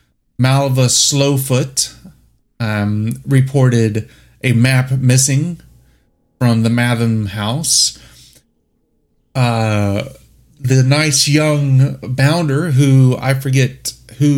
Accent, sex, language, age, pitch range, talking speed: American, male, English, 30-49, 120-155 Hz, 85 wpm